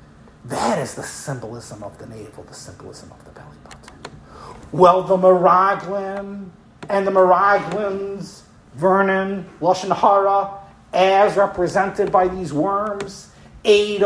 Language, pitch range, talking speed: English, 175-210 Hz, 125 wpm